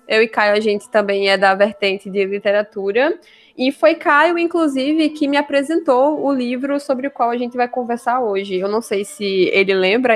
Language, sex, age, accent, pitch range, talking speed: Portuguese, female, 10-29, Brazilian, 205-240 Hz, 200 wpm